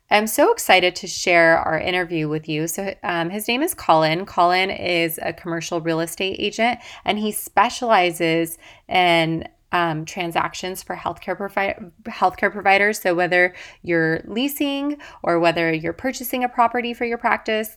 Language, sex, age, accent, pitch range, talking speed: English, female, 20-39, American, 170-210 Hz, 155 wpm